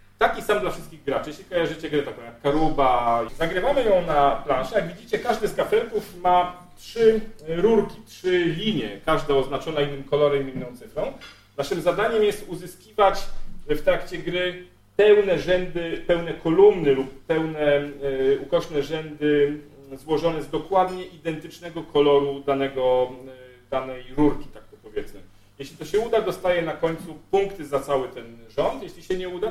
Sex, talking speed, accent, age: male, 150 wpm, native, 40-59